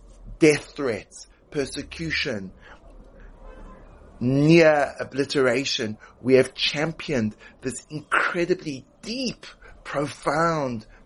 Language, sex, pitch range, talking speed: English, male, 105-135 Hz, 65 wpm